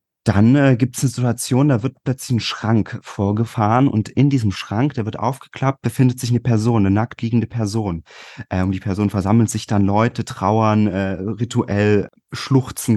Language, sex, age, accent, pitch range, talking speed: German, male, 30-49, German, 95-115 Hz, 180 wpm